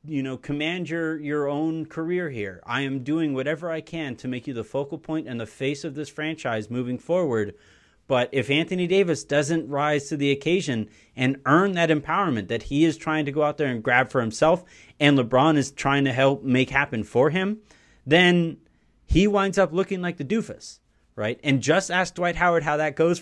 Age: 30-49